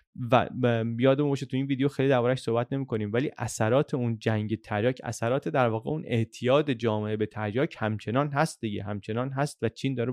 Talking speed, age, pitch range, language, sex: 185 wpm, 30-49, 115-140 Hz, Persian, male